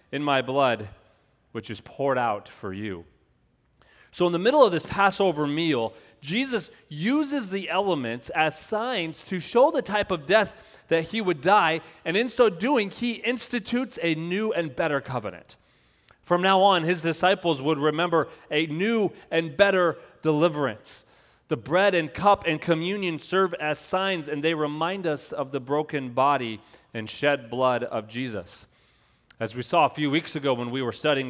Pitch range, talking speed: 140-185 Hz, 170 wpm